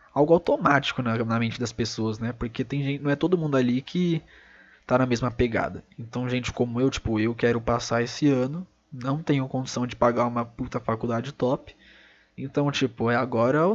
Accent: Brazilian